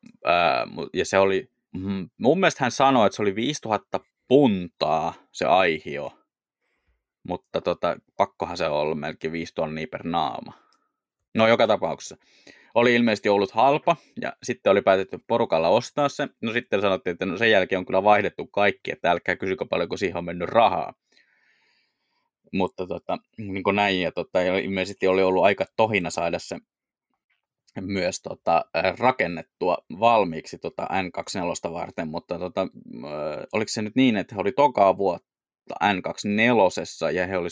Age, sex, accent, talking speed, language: 20-39, male, native, 155 wpm, Finnish